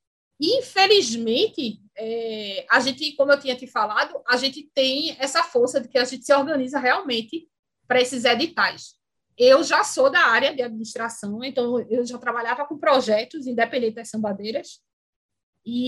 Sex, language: female, Portuguese